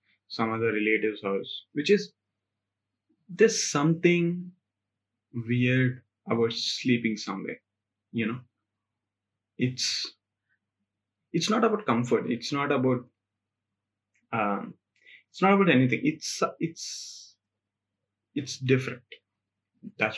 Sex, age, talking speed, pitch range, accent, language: male, 30-49, 95 wpm, 105-130 Hz, Indian, English